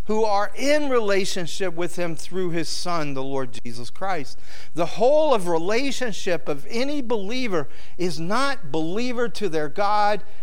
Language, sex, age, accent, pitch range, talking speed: English, male, 50-69, American, 140-225 Hz, 150 wpm